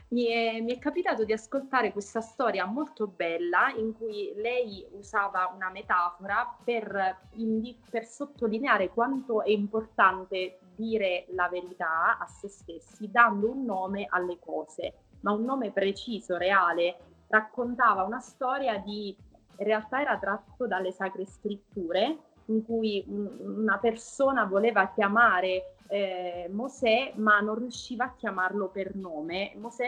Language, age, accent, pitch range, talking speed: Italian, 20-39, native, 190-230 Hz, 130 wpm